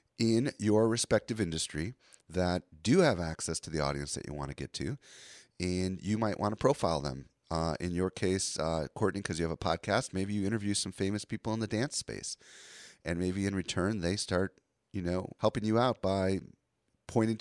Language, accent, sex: English, American, male